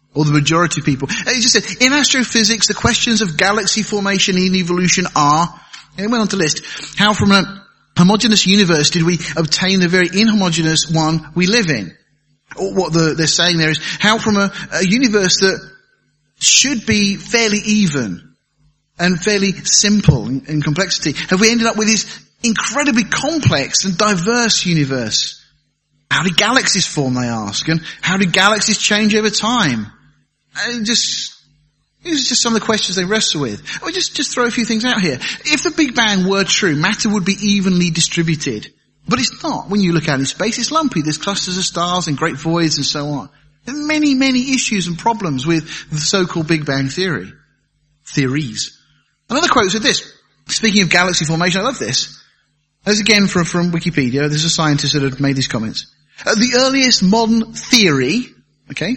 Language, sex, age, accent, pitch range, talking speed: English, male, 30-49, British, 150-220 Hz, 190 wpm